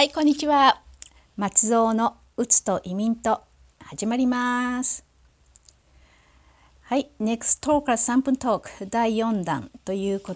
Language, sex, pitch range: Japanese, female, 175-230 Hz